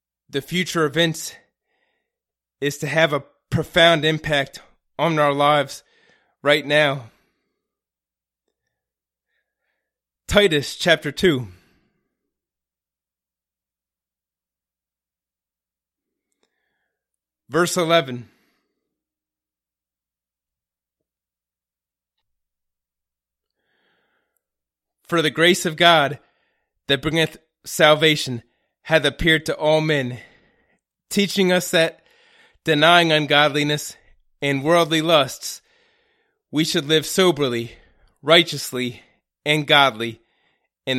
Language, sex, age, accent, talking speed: English, male, 20-39, American, 70 wpm